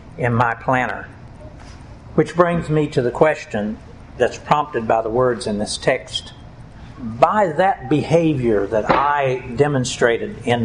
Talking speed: 135 wpm